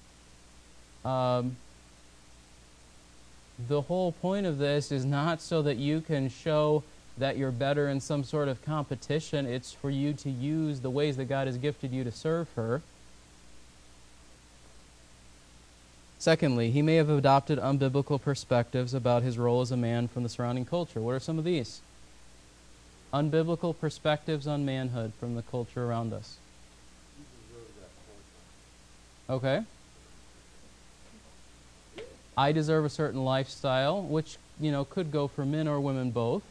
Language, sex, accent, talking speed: English, male, American, 140 wpm